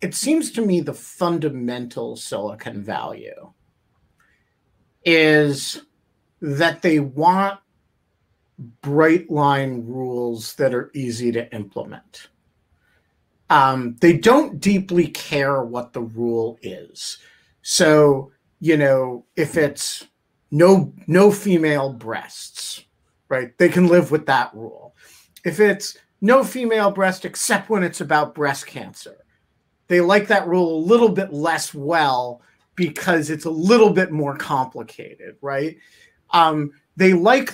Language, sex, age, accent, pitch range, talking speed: English, male, 50-69, American, 140-190 Hz, 120 wpm